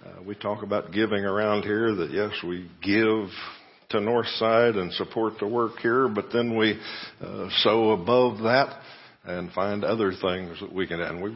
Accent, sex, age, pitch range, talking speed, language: American, male, 60-79, 100-115 Hz, 185 wpm, English